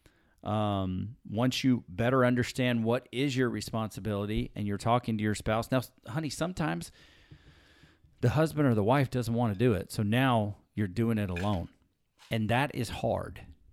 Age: 40-59